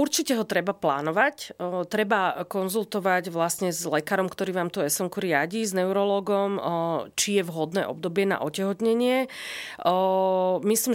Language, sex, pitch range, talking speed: Slovak, female, 170-200 Hz, 125 wpm